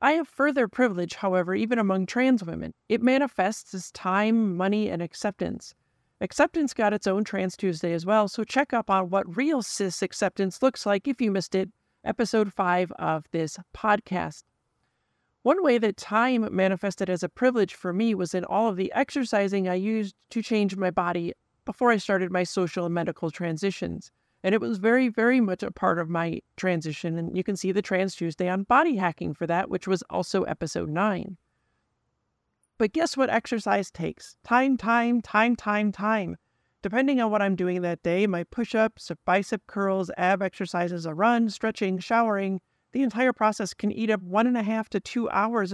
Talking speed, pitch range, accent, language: 185 wpm, 185-230 Hz, American, English